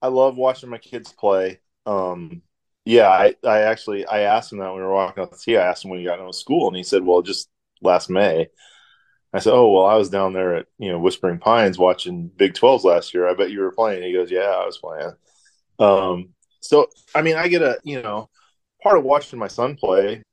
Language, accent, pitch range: English, American, 90-110 Hz